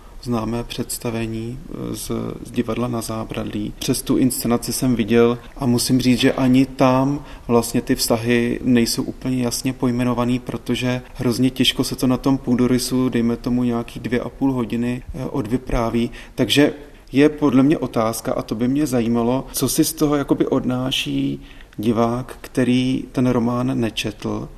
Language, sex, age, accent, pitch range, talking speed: Czech, male, 30-49, native, 120-135 Hz, 150 wpm